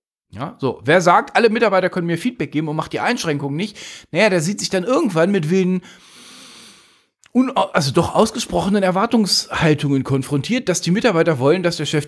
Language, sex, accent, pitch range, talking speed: German, male, German, 130-180 Hz, 175 wpm